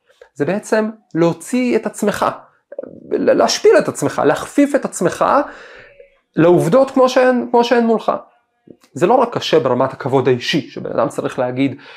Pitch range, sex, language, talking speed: 135-180 Hz, male, Hebrew, 130 wpm